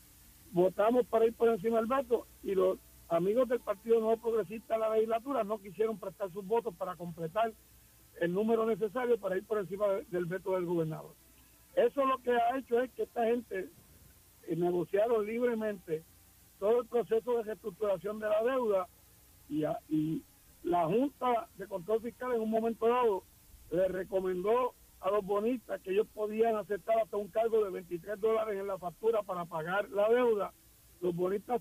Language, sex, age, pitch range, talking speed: Spanish, male, 60-79, 190-235 Hz, 170 wpm